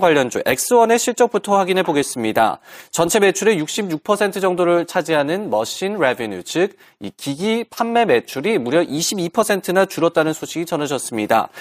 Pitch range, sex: 145-200 Hz, male